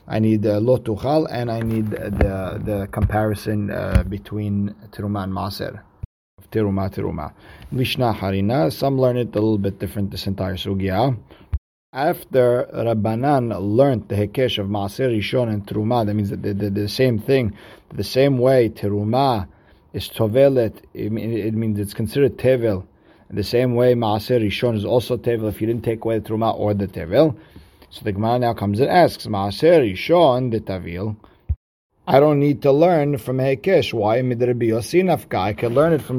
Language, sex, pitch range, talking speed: English, male, 105-130 Hz, 165 wpm